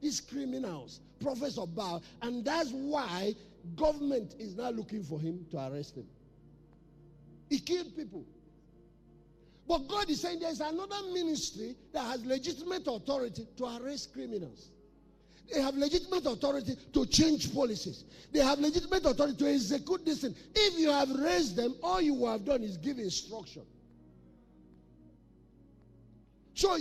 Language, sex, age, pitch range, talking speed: English, male, 50-69, 205-320 Hz, 140 wpm